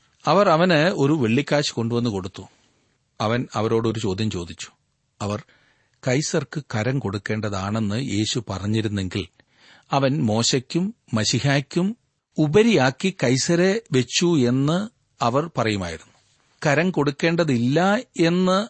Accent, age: native, 40-59